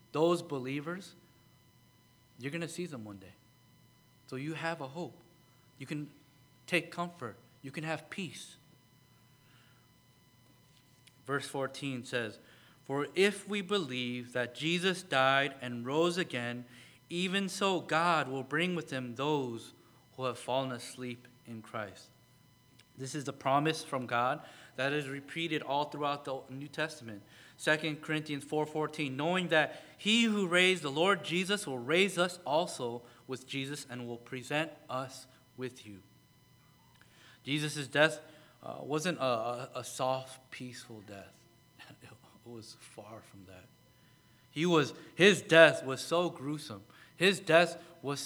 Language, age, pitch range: English, 30-49, 125-165 Hz